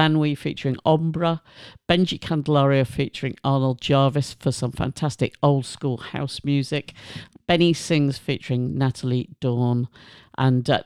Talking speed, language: 115 wpm, English